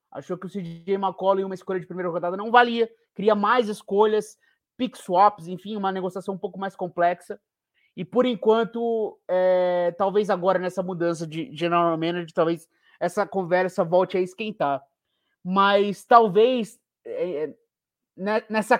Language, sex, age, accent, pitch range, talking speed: English, male, 20-39, Brazilian, 175-210 Hz, 145 wpm